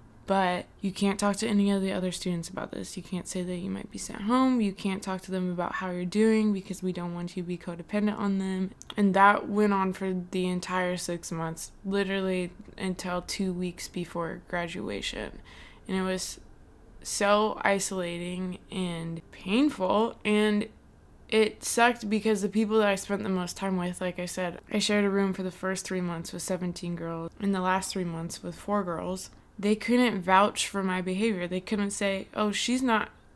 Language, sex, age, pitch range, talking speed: English, female, 20-39, 180-210 Hz, 200 wpm